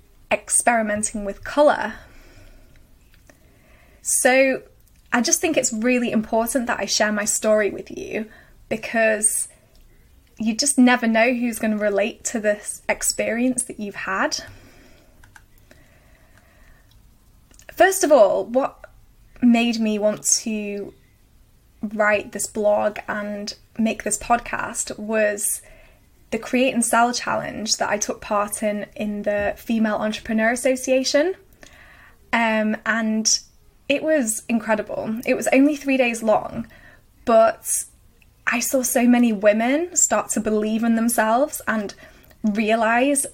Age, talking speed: 20-39, 120 wpm